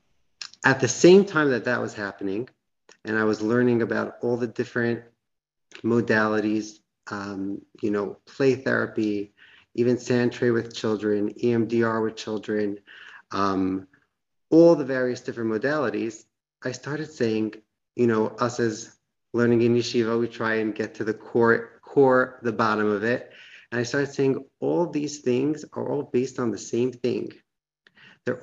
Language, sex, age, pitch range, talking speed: English, male, 40-59, 110-140 Hz, 155 wpm